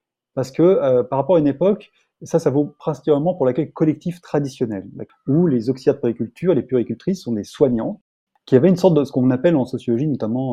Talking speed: 210 wpm